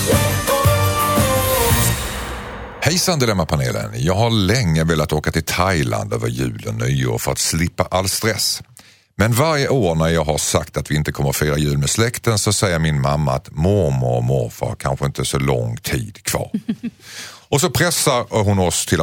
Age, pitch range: 50-69, 80-125 Hz